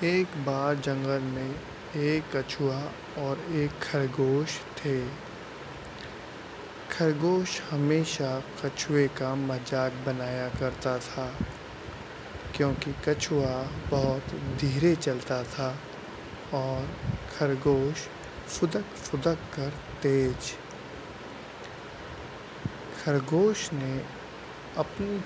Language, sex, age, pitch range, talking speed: Hindi, male, 30-49, 135-155 Hz, 80 wpm